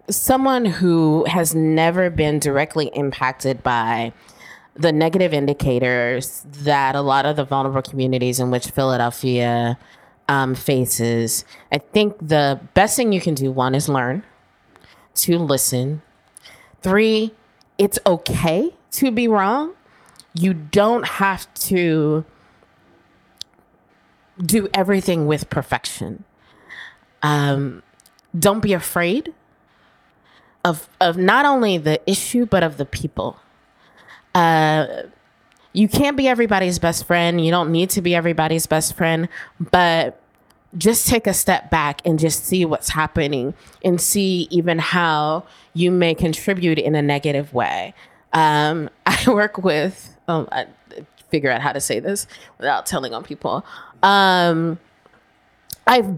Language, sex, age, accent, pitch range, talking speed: English, female, 20-39, American, 140-185 Hz, 125 wpm